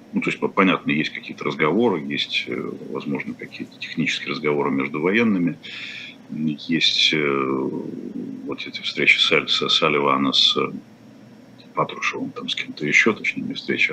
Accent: native